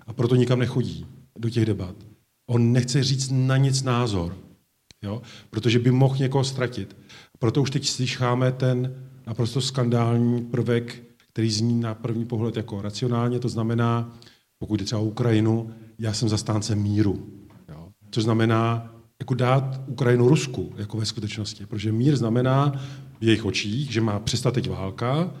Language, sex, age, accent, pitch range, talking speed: Czech, male, 40-59, native, 110-130 Hz, 155 wpm